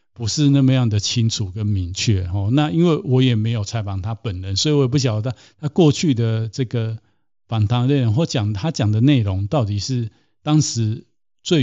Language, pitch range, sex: Chinese, 105-130 Hz, male